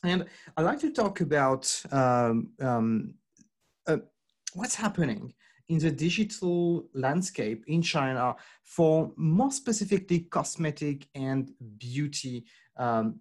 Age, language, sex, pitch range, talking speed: 40-59, English, male, 130-175 Hz, 110 wpm